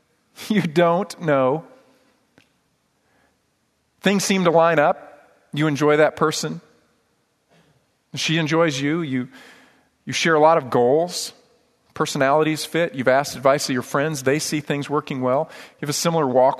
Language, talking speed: English, 145 wpm